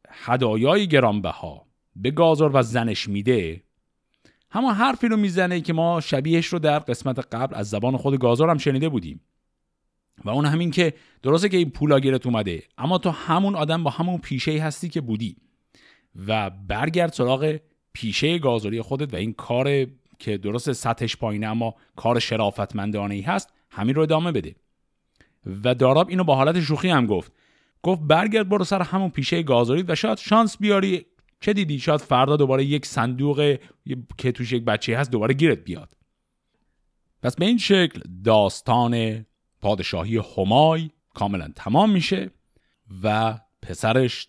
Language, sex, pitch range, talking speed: Persian, male, 110-165 Hz, 150 wpm